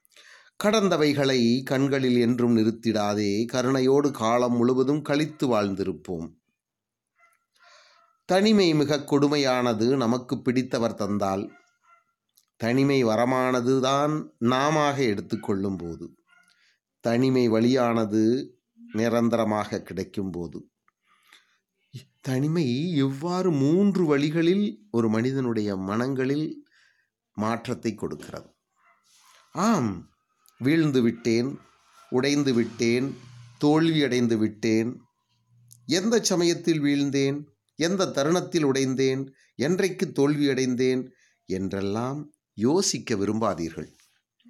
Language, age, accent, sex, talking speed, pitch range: English, 30-49, Indian, male, 75 wpm, 115-150 Hz